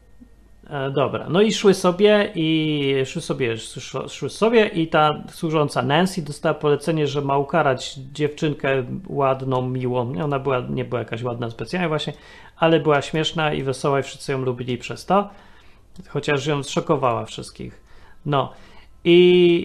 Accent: native